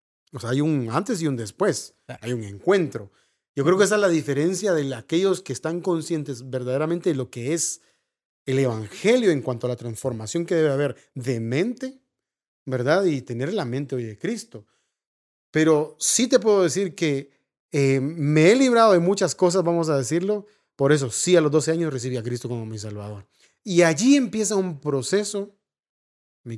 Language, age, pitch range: Spanish, 30-49, 125-175 Hz